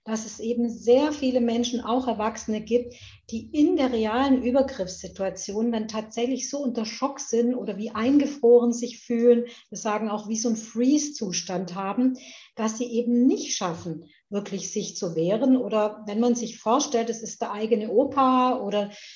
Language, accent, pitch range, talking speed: German, German, 210-250 Hz, 165 wpm